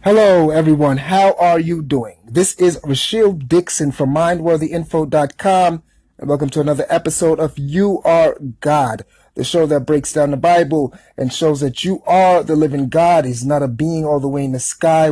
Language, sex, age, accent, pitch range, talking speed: English, male, 30-49, American, 135-165 Hz, 185 wpm